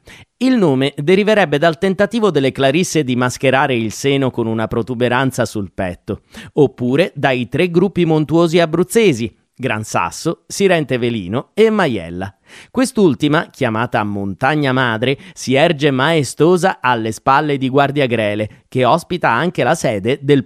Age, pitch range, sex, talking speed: 30-49, 120-170 Hz, male, 135 wpm